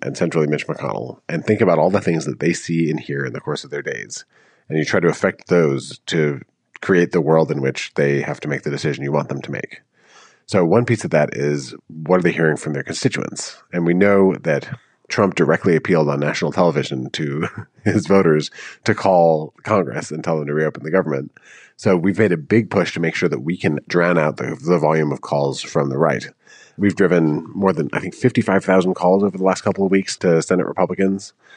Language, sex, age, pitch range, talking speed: English, male, 40-59, 75-95 Hz, 225 wpm